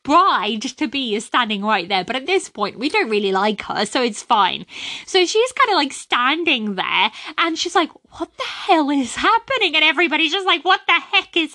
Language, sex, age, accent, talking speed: English, female, 20-39, British, 210 wpm